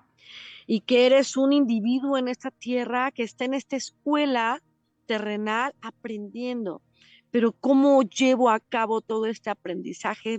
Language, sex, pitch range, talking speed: Spanish, female, 185-230 Hz, 135 wpm